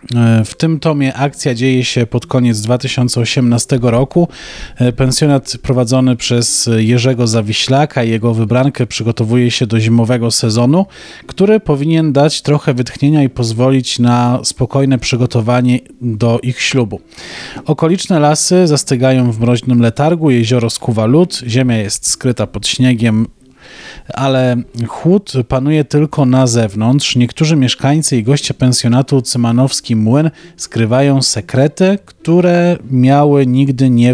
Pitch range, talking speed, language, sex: 120-145 Hz, 120 wpm, Polish, male